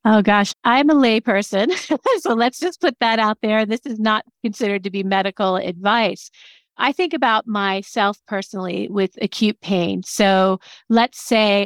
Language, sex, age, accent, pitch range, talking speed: English, female, 40-59, American, 185-225 Hz, 165 wpm